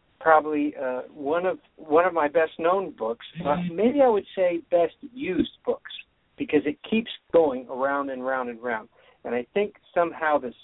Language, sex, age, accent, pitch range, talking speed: English, male, 60-79, American, 125-175 Hz, 180 wpm